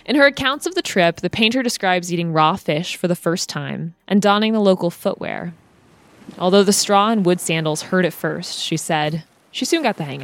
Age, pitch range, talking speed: 20-39, 160-205 Hz, 215 wpm